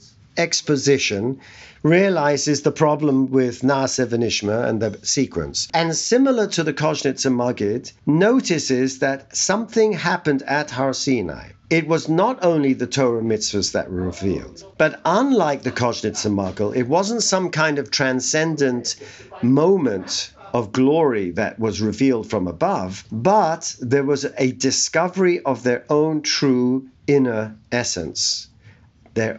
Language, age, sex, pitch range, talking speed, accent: English, 50-69, male, 105-140 Hz, 130 wpm, British